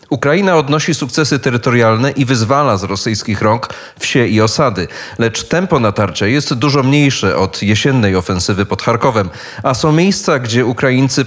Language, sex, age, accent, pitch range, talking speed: Polish, male, 30-49, native, 105-135 Hz, 150 wpm